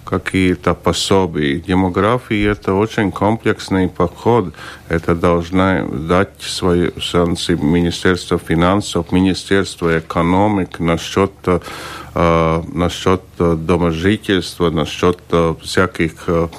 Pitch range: 85-95 Hz